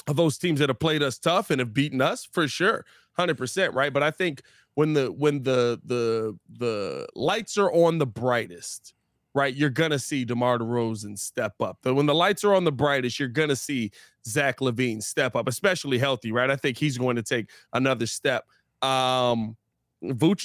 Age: 20-39